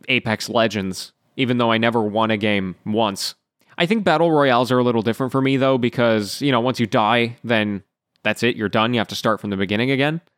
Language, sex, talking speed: English, male, 230 wpm